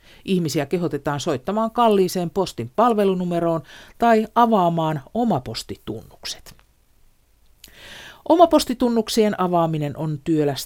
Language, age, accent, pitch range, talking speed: Finnish, 50-69, native, 140-195 Hz, 80 wpm